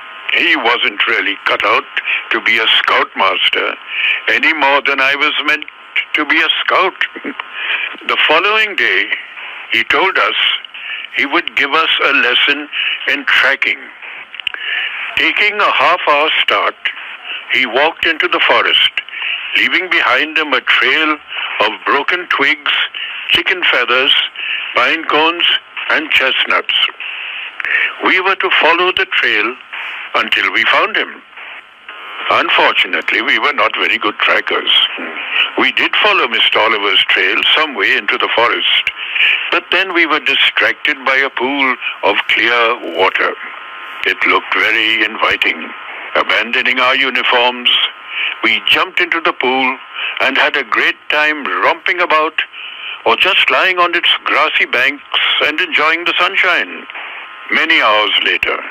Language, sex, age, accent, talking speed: Marathi, male, 60-79, native, 130 wpm